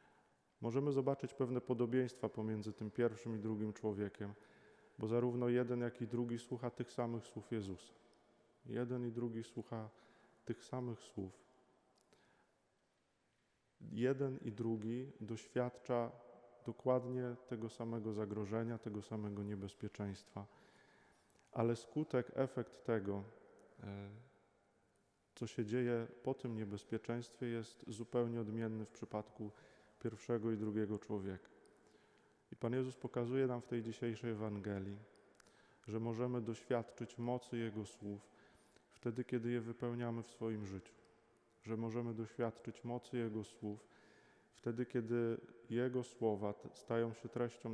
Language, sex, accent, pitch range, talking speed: Polish, male, native, 105-120 Hz, 115 wpm